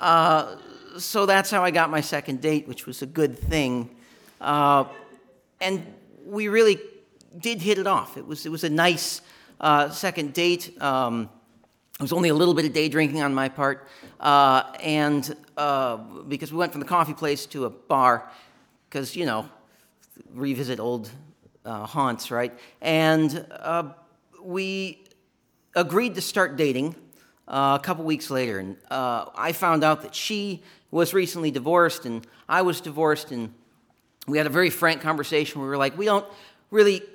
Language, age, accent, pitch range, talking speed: English, 50-69, American, 145-180 Hz, 170 wpm